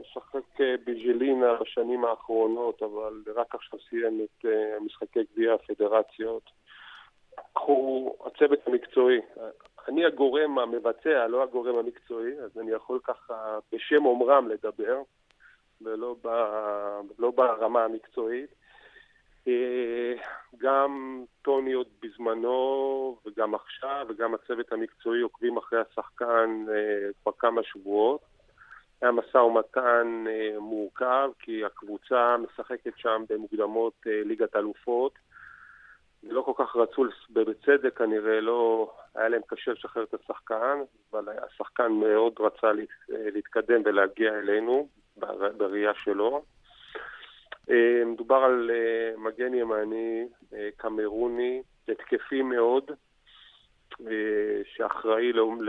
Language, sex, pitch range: Hebrew, male, 110-135 Hz